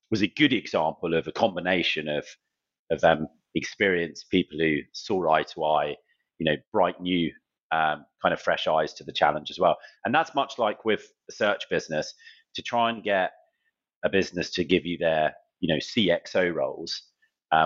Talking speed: 185 wpm